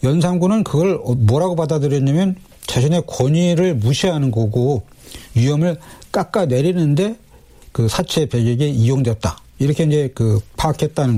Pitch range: 120-160 Hz